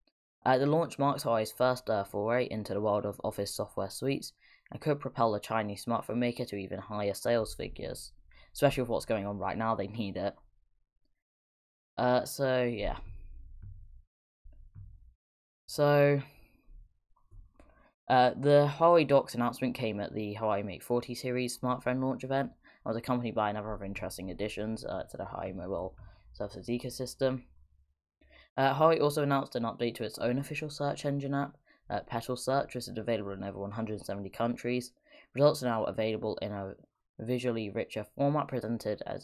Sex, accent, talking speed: female, British, 160 wpm